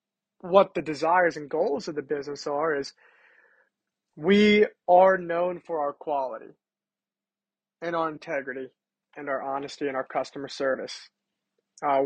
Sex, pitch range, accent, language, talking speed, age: male, 150-185 Hz, American, English, 135 wpm, 30-49